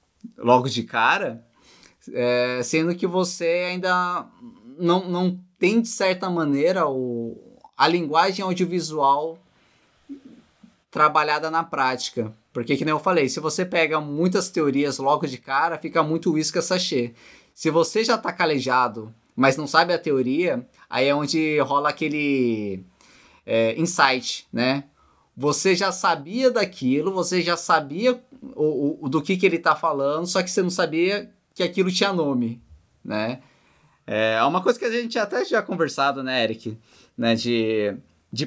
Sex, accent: male, Brazilian